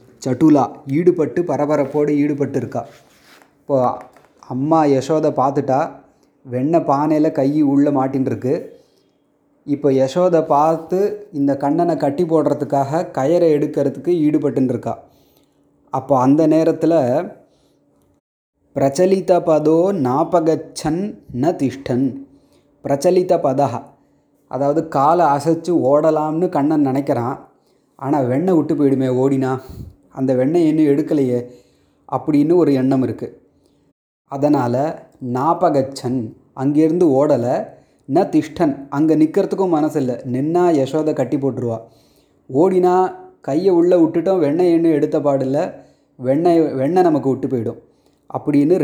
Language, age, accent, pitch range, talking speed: Tamil, 20-39, native, 135-165 Hz, 95 wpm